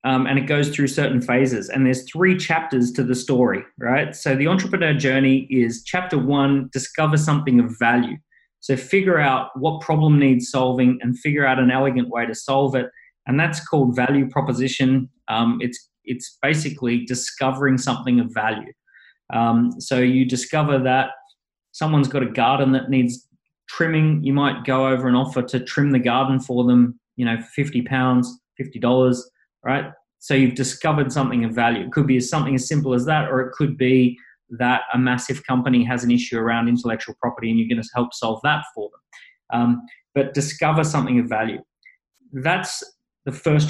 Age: 20-39